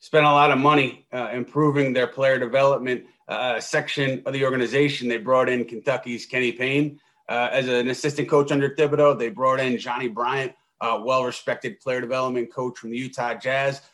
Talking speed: 185 wpm